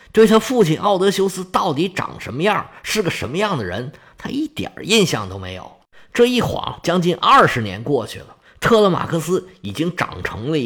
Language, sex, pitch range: Chinese, male, 125-210 Hz